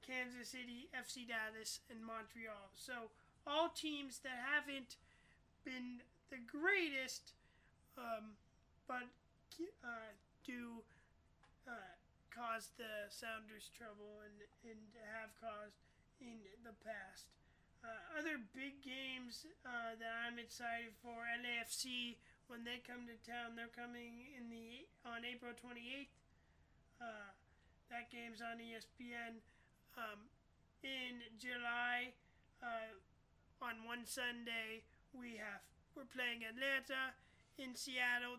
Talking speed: 115 wpm